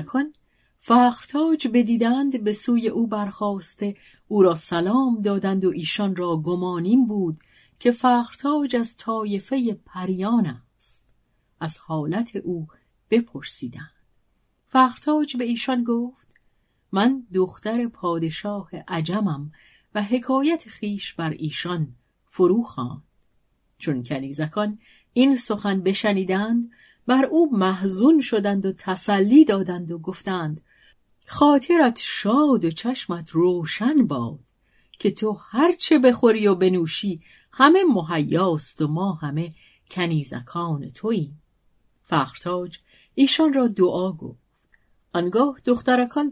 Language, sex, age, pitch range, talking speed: Persian, female, 40-59, 170-240 Hz, 105 wpm